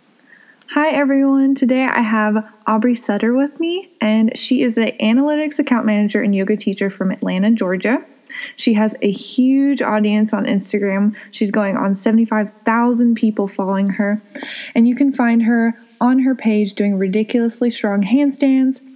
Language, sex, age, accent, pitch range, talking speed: English, female, 20-39, American, 205-260 Hz, 150 wpm